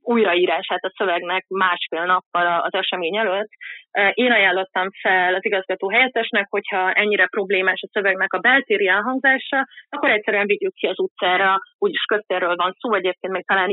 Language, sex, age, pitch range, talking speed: Hungarian, female, 30-49, 180-230 Hz, 150 wpm